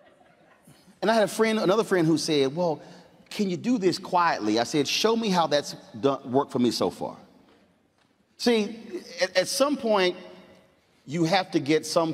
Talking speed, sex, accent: 185 wpm, male, American